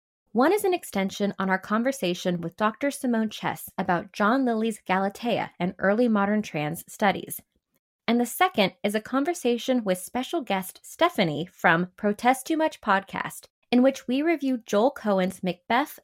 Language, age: English, 20-39